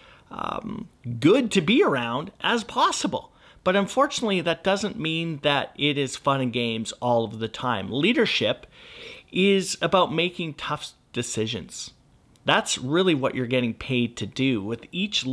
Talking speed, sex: 150 wpm, male